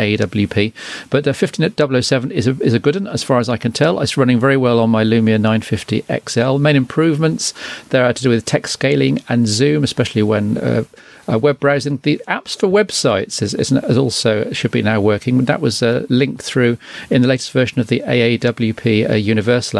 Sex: male